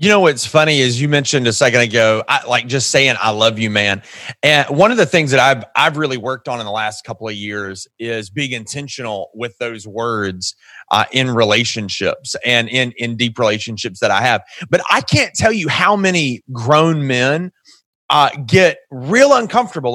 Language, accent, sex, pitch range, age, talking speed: English, American, male, 125-190 Hz, 30-49, 195 wpm